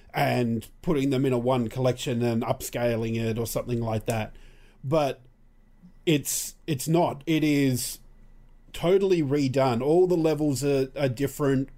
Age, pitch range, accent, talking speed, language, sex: 40-59, 125-155 Hz, Australian, 145 wpm, English, male